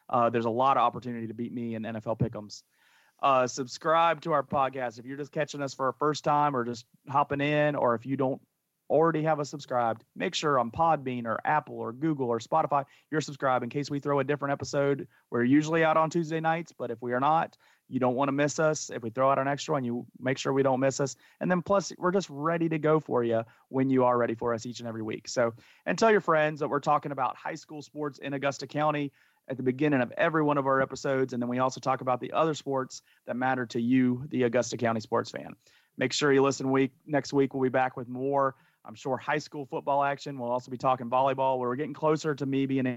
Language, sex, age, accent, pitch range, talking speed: English, male, 30-49, American, 125-145 Hz, 250 wpm